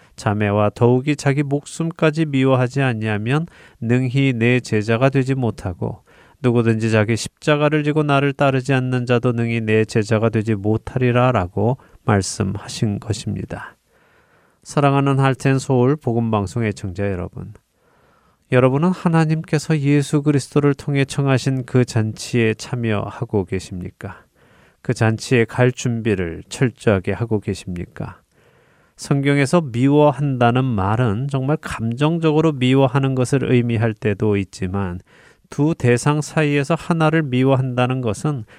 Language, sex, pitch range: Korean, male, 110-140 Hz